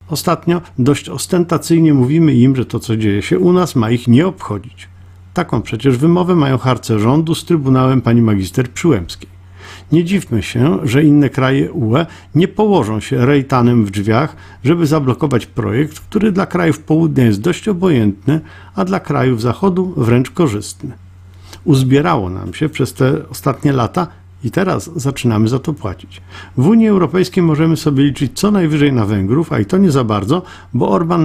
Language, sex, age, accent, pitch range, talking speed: Polish, male, 50-69, native, 110-155 Hz, 165 wpm